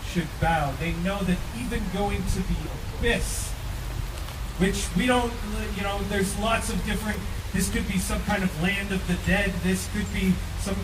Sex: male